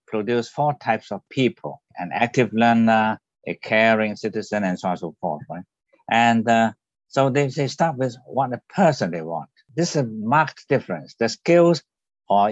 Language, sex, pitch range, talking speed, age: English, male, 105-135 Hz, 180 wpm, 60-79